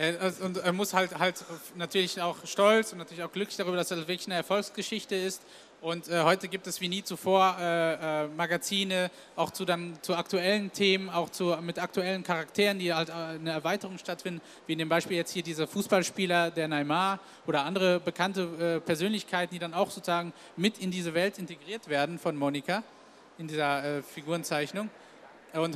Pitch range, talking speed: 160-190 Hz, 180 wpm